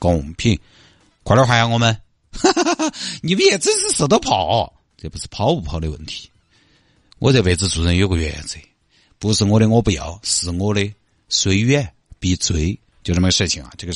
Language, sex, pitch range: Chinese, male, 85-115 Hz